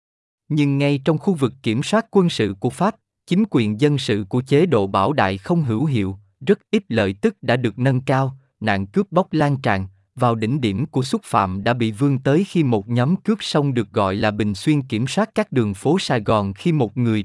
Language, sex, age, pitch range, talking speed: Vietnamese, male, 20-39, 110-155 Hz, 230 wpm